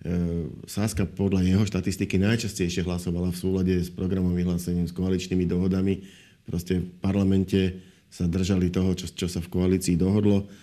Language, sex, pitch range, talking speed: Slovak, male, 85-95 Hz, 145 wpm